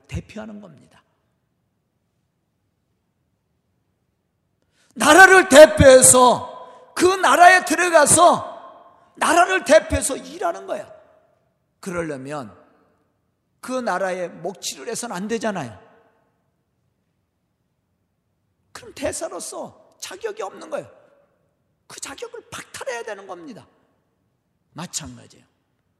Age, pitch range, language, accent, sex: 40-59, 235-315 Hz, Korean, native, male